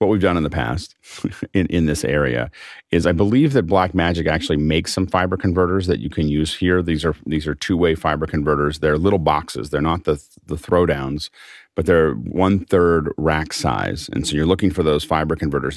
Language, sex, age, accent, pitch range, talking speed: English, male, 40-59, American, 75-90 Hz, 200 wpm